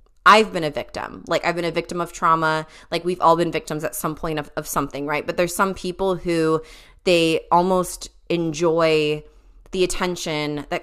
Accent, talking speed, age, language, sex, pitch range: American, 190 wpm, 20-39, English, female, 155-180 Hz